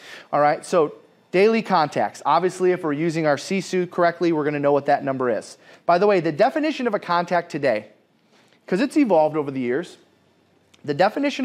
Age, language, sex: 30-49, English, male